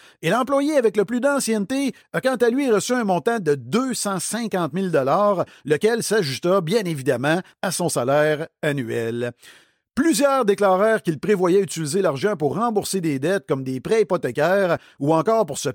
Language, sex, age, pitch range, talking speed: French, male, 50-69, 155-225 Hz, 160 wpm